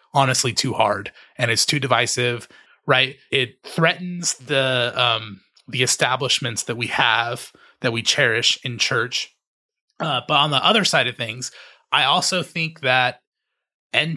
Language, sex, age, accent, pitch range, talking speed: English, male, 30-49, American, 120-150 Hz, 150 wpm